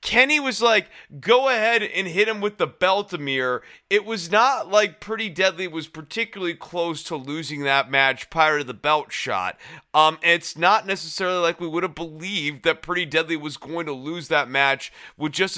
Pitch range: 155-215 Hz